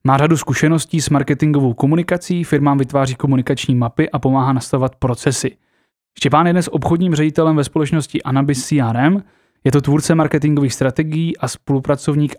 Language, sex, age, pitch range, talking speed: Czech, male, 20-39, 130-150 Hz, 145 wpm